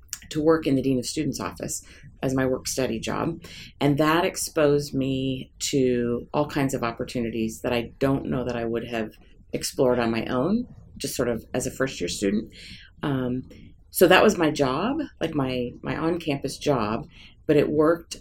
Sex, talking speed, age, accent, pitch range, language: female, 180 wpm, 30-49, American, 120-150 Hz, English